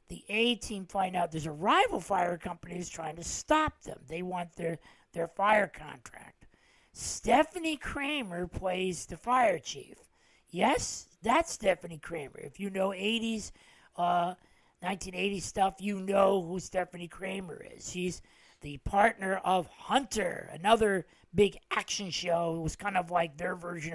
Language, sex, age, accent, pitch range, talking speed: English, male, 40-59, American, 160-195 Hz, 150 wpm